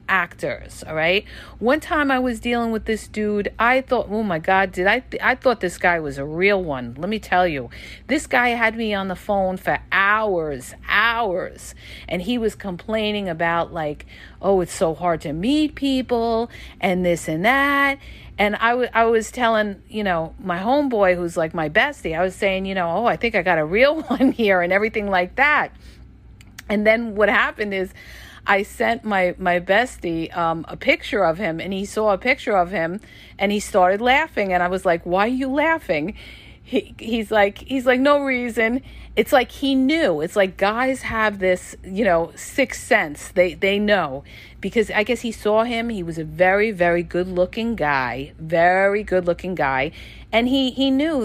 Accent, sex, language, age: American, female, English, 50-69